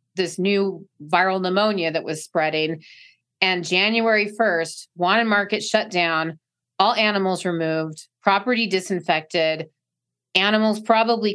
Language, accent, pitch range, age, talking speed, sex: English, American, 165-200 Hz, 30-49, 110 wpm, female